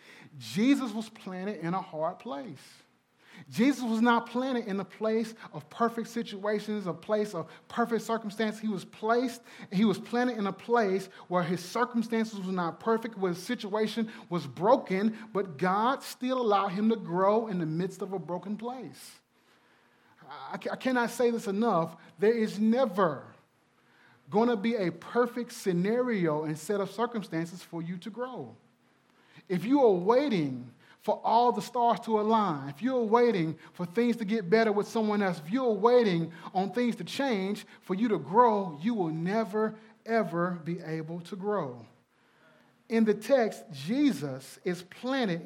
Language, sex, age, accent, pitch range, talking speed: English, male, 30-49, American, 175-230 Hz, 160 wpm